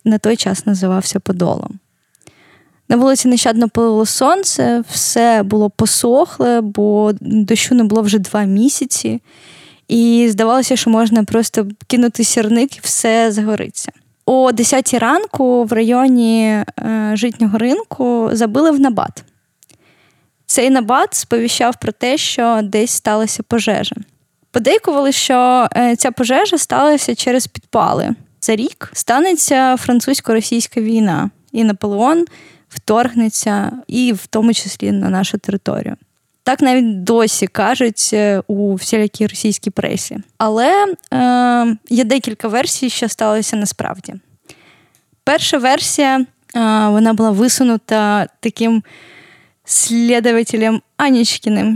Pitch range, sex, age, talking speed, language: 215-250 Hz, female, 10-29, 110 wpm, Ukrainian